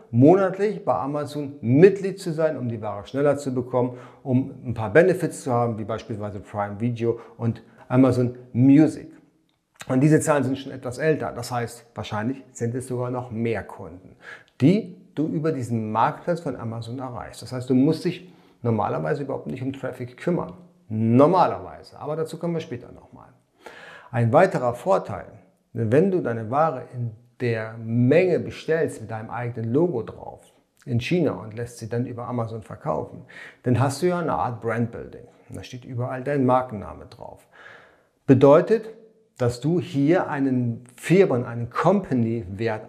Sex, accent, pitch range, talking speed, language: male, German, 115-155 Hz, 160 wpm, German